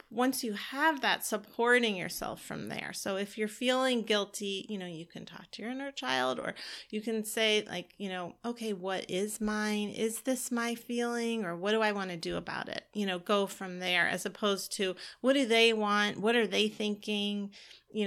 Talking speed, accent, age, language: 210 wpm, American, 30-49, English